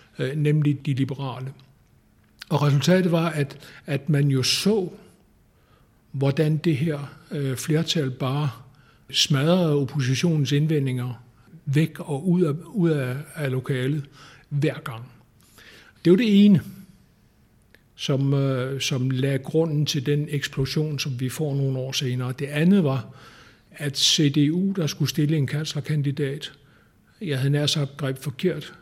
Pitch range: 130-150 Hz